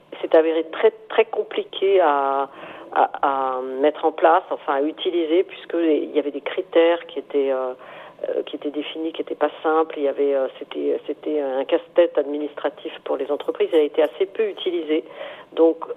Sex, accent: female, French